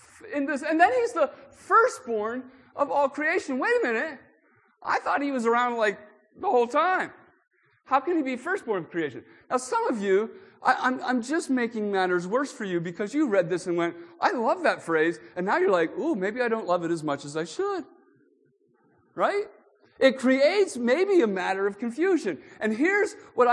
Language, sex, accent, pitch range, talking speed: English, male, American, 185-285 Hz, 195 wpm